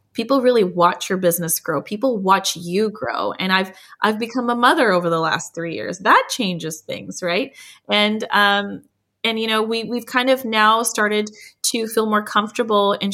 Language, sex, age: English, female, 20-39